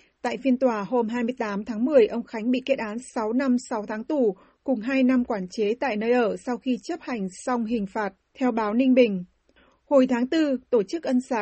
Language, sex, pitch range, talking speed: Vietnamese, female, 220-260 Hz, 225 wpm